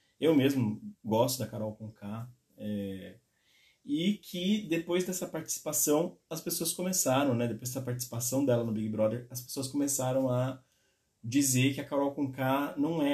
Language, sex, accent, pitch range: Portuguese, male, Brazilian, 110-135 Hz